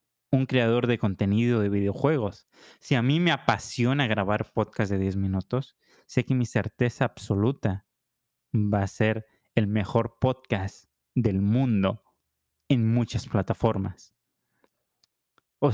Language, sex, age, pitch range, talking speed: Spanish, male, 30-49, 105-125 Hz, 125 wpm